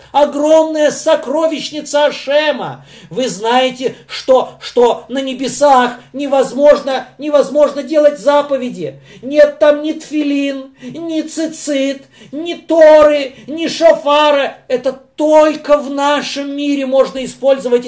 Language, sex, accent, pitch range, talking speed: Russian, male, native, 235-295 Hz, 100 wpm